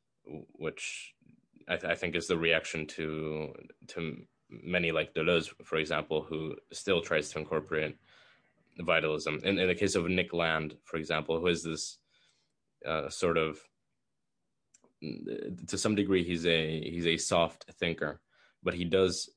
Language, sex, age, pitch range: English, male, 20-39, 80-90 Hz